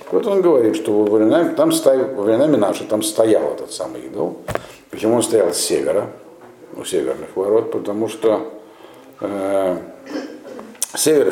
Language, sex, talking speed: Russian, male, 120 wpm